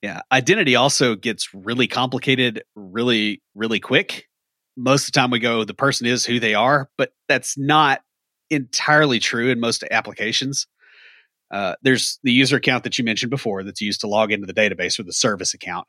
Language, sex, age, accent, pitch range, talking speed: English, male, 30-49, American, 105-130 Hz, 185 wpm